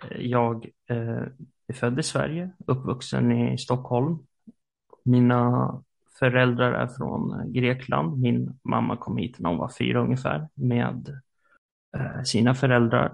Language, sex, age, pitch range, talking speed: Swedish, male, 30-49, 120-140 Hz, 115 wpm